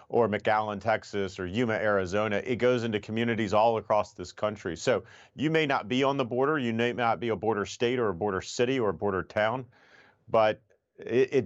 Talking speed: 210 wpm